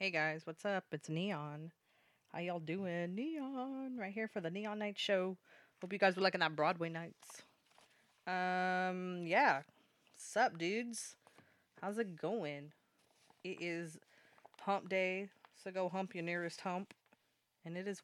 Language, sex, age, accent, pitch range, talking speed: English, female, 20-39, American, 180-225 Hz, 150 wpm